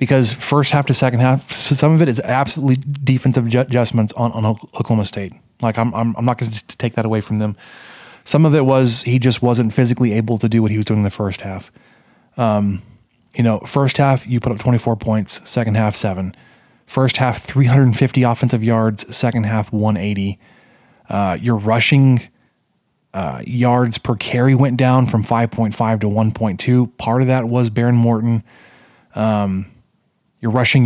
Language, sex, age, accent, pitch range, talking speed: English, male, 20-39, American, 110-125 Hz, 180 wpm